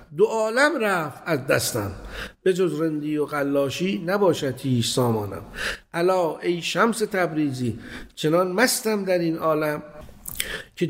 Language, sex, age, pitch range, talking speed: Persian, male, 50-69, 140-190 Hz, 125 wpm